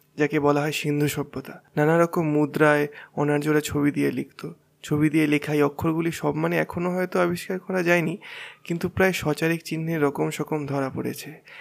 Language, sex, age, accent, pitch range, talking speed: Bengali, male, 20-39, native, 145-165 Hz, 160 wpm